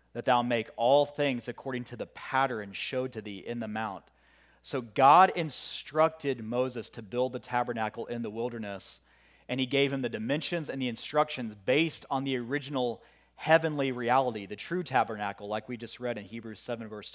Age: 30-49